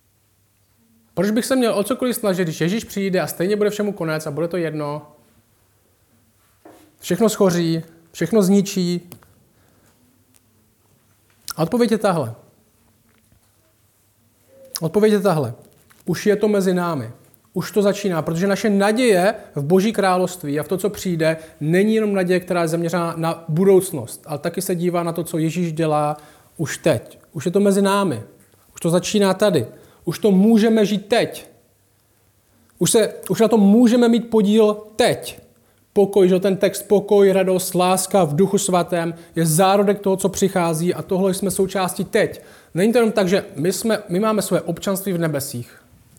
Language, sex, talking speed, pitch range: Czech, male, 160 wpm, 150-200 Hz